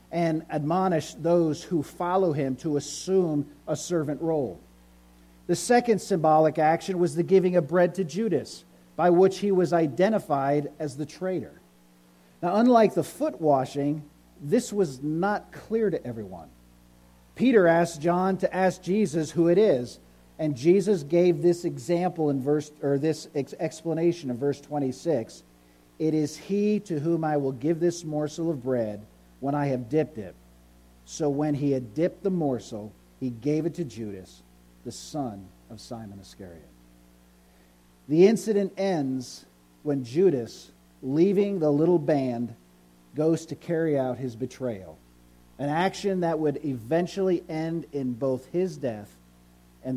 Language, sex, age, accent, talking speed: English, male, 50-69, American, 150 wpm